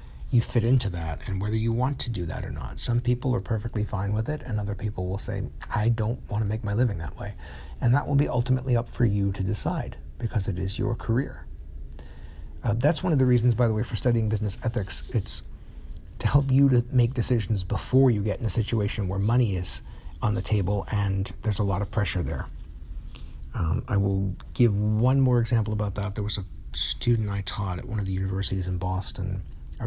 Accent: American